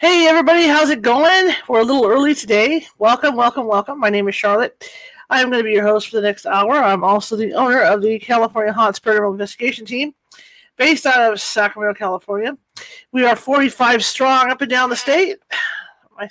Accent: American